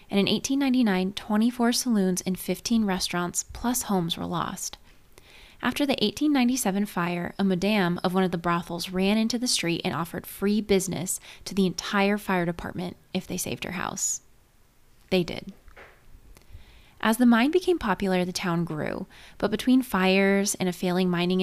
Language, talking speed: English, 160 wpm